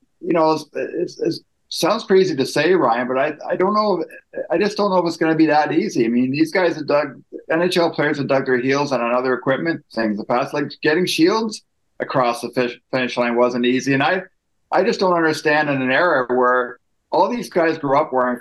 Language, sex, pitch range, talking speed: English, male, 125-180 Hz, 220 wpm